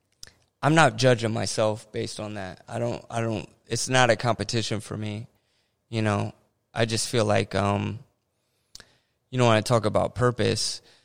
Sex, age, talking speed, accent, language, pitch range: male, 20-39, 170 wpm, American, English, 105-120 Hz